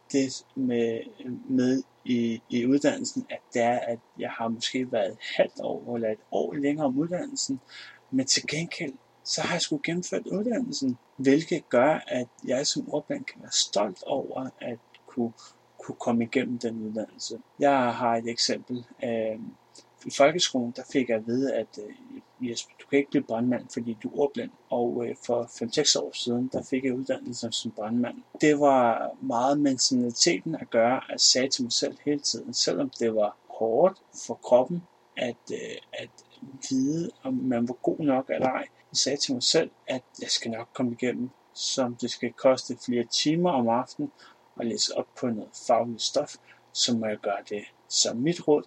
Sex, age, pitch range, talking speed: male, 30-49, 115-150 Hz, 185 wpm